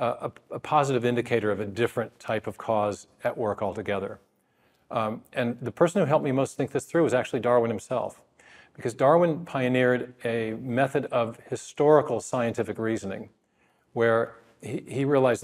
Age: 40-59